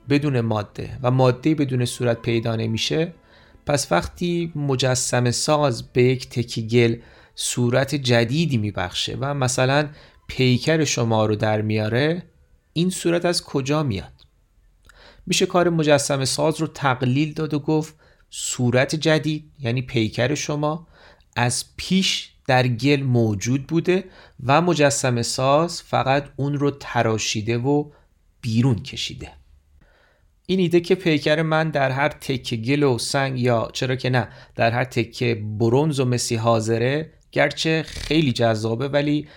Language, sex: Persian, male